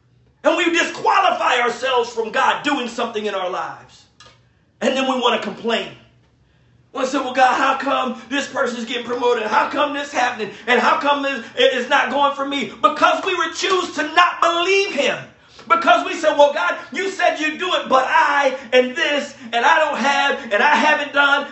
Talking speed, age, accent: 200 wpm, 40-59, American